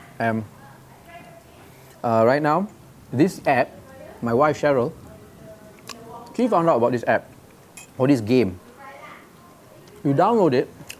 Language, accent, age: English, Malaysian, 30-49